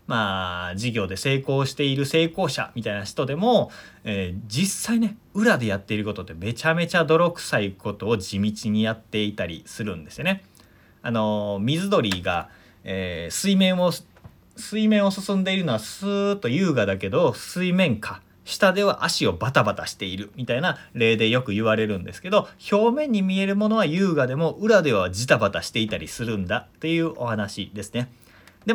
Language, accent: Japanese, native